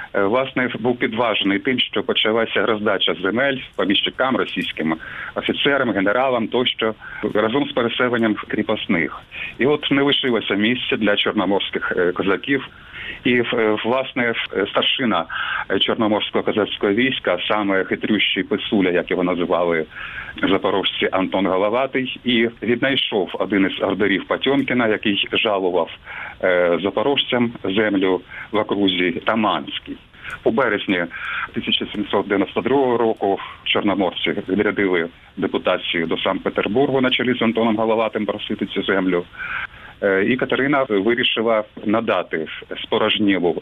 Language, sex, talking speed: Ukrainian, male, 100 wpm